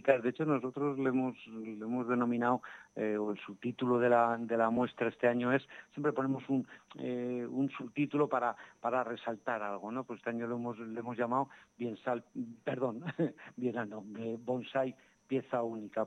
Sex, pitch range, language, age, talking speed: male, 120-135 Hz, Spanish, 50-69, 145 wpm